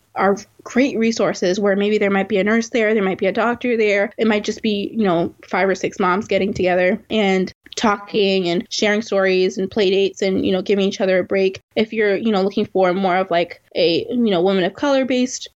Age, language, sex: 20-39, English, female